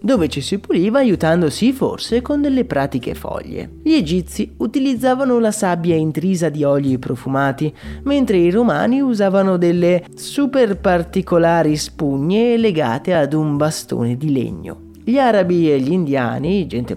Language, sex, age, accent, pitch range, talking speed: Italian, male, 30-49, native, 145-225 Hz, 140 wpm